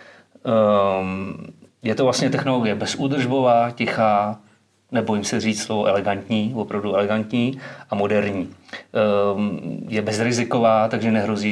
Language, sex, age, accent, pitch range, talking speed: Czech, male, 30-49, native, 100-115 Hz, 110 wpm